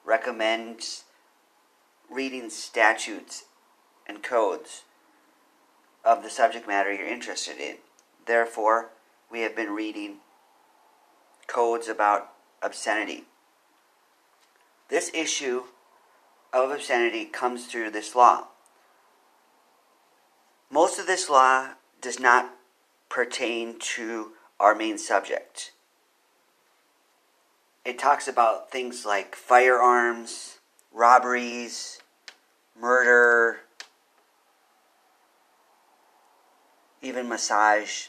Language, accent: English, American